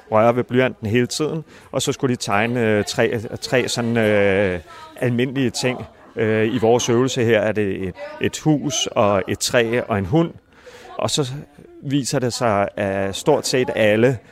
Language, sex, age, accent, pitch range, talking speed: Danish, male, 30-49, native, 110-130 Hz, 155 wpm